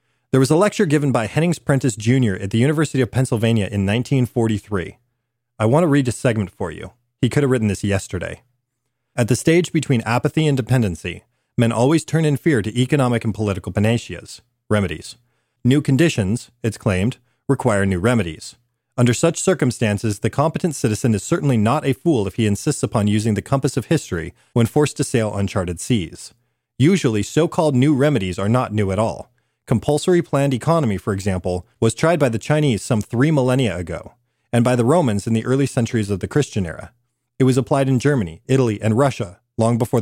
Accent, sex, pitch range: American, male, 110-140 Hz